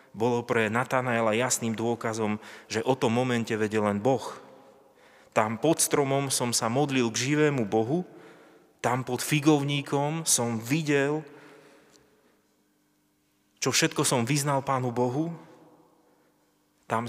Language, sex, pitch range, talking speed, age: Slovak, male, 110-135 Hz, 115 wpm, 30-49